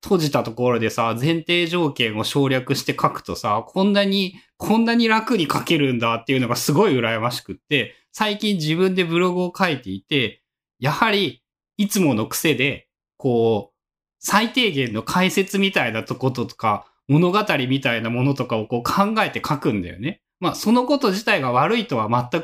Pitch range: 125-195 Hz